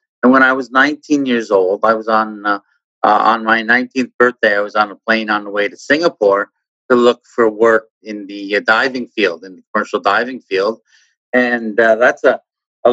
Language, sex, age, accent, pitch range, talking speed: English, male, 50-69, American, 100-120 Hz, 210 wpm